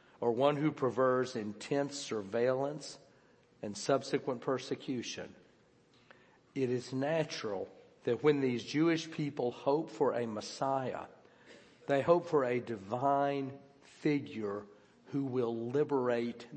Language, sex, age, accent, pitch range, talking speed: English, male, 50-69, American, 120-145 Hz, 110 wpm